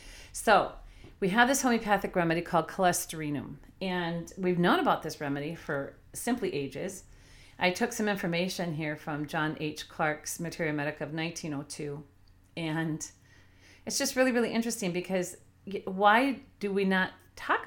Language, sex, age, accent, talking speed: English, female, 40-59, American, 145 wpm